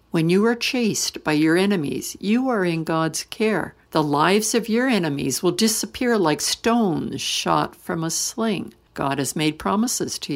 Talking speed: 175 wpm